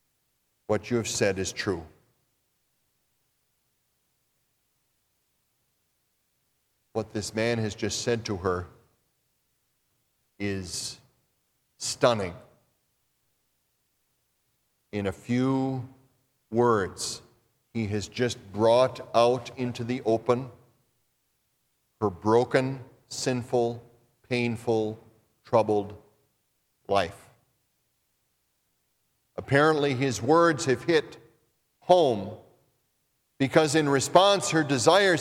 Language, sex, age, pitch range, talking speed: English, male, 40-59, 120-185 Hz, 75 wpm